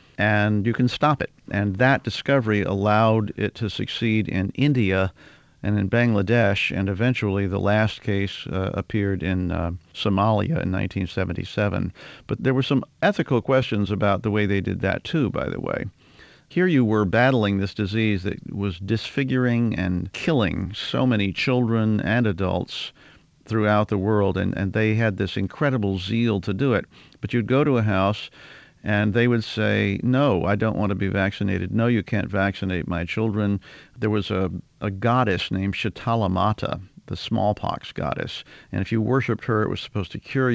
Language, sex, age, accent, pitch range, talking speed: English, male, 50-69, American, 95-115 Hz, 175 wpm